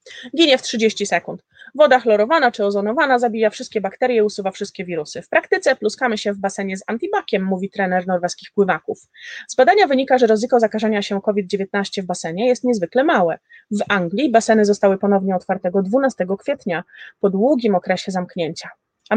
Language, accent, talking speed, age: Polish, native, 165 wpm, 30-49